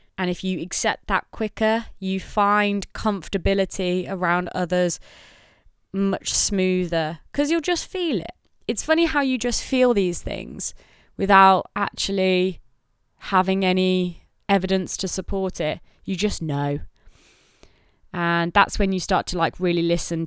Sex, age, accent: female, 20-39, British